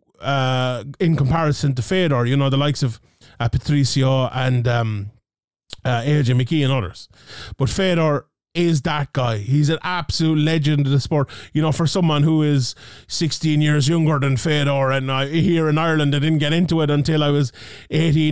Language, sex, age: English, male, 20-39